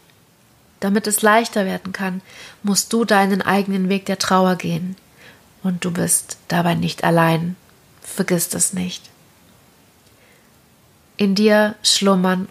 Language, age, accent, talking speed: German, 30-49, German, 120 wpm